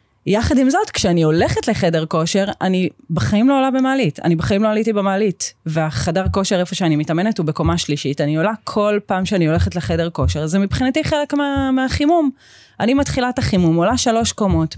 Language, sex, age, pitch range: Hebrew, female, 30-49, 155-215 Hz